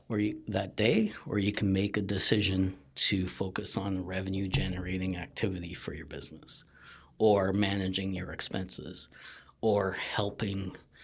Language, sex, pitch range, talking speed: English, male, 95-115 Hz, 130 wpm